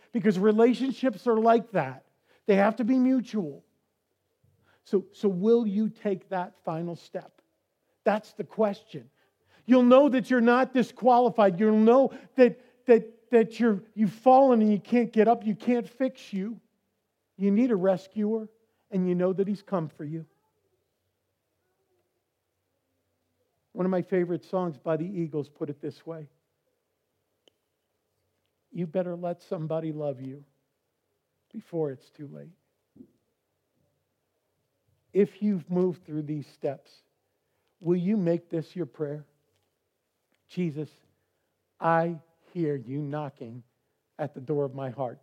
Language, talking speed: English, 135 wpm